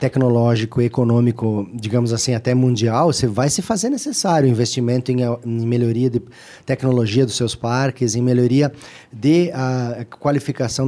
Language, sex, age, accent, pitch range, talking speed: Portuguese, male, 20-39, Brazilian, 120-155 Hz, 125 wpm